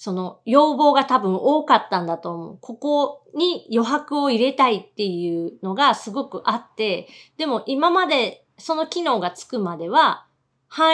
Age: 40-59